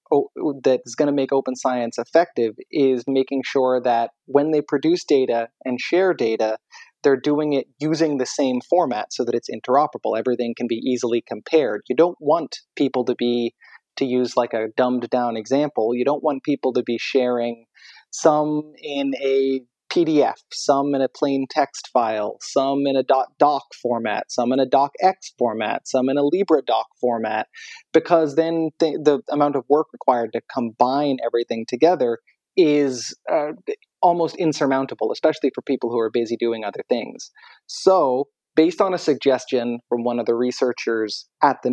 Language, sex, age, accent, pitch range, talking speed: English, male, 30-49, American, 120-150 Hz, 170 wpm